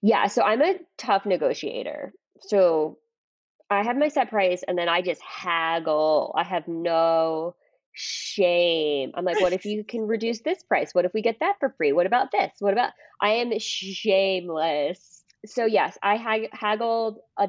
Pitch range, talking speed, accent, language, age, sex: 175-235 Hz, 170 wpm, American, English, 20-39, female